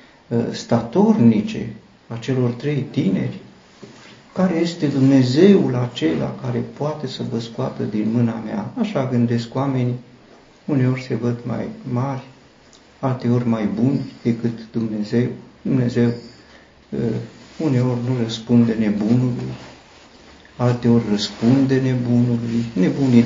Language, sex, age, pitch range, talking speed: Romanian, male, 50-69, 115-125 Hz, 100 wpm